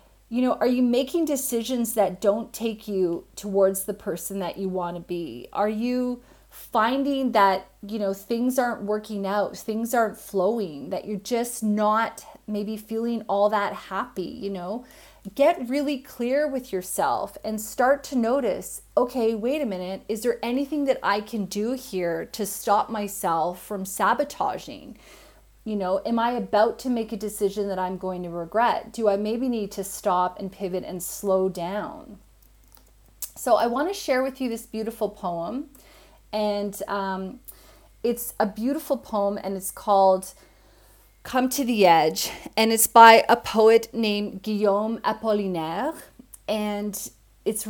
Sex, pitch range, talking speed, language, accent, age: female, 195-245 Hz, 160 wpm, English, American, 30-49